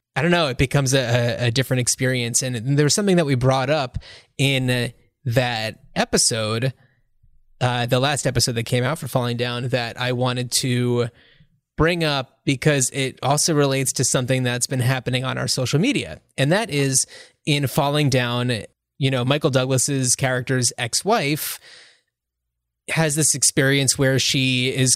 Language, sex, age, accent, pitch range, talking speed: English, male, 20-39, American, 120-140 Hz, 160 wpm